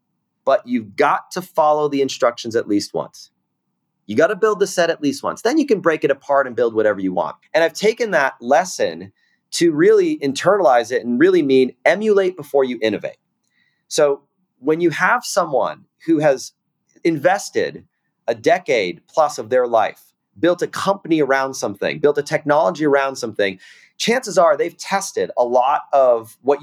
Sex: male